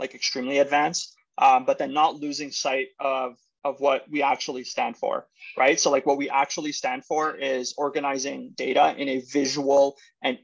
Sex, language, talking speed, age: male, English, 180 wpm, 20-39